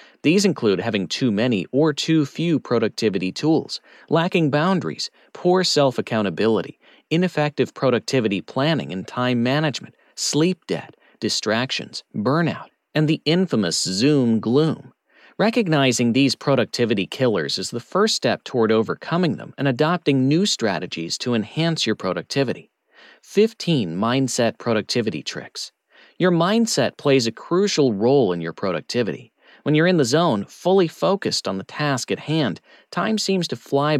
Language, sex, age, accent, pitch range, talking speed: English, male, 40-59, American, 120-170 Hz, 135 wpm